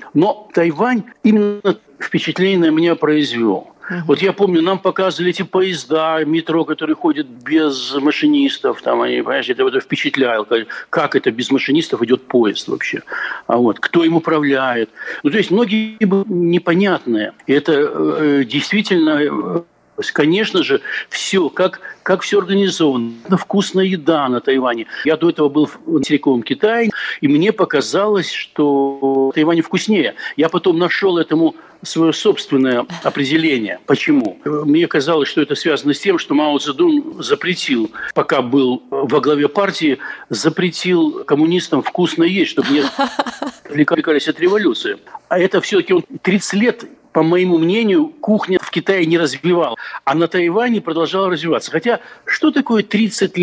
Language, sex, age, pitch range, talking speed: Russian, male, 60-79, 160-220 Hz, 140 wpm